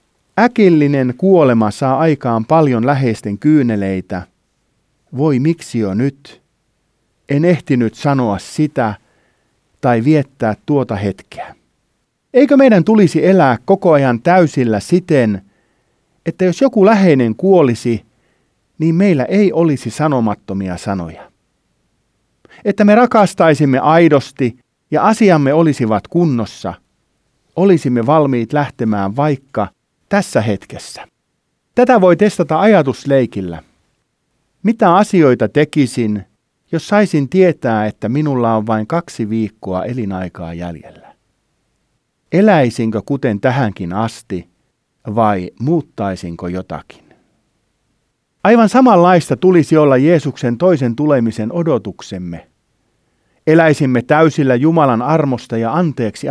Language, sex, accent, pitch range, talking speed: Finnish, male, native, 110-165 Hz, 95 wpm